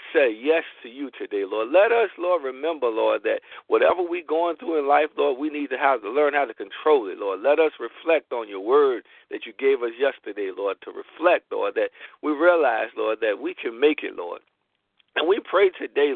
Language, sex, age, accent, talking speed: English, male, 50-69, American, 220 wpm